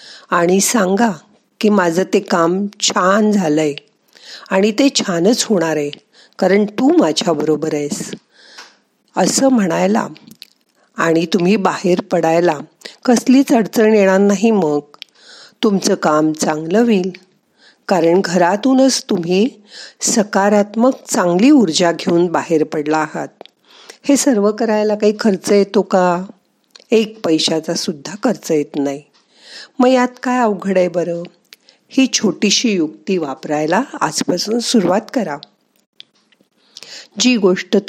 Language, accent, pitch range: Marathi, native, 175-230 Hz